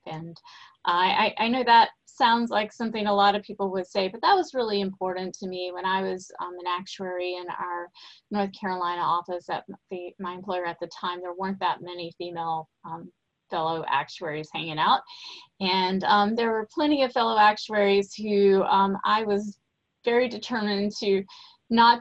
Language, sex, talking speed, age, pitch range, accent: English, female, 180 wpm, 20-39, 175-205 Hz, American